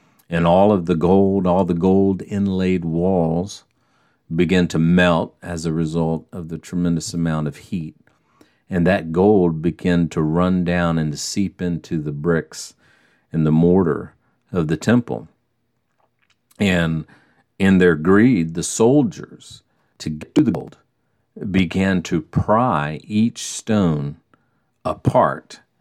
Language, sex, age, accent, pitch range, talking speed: English, male, 50-69, American, 80-95 Hz, 135 wpm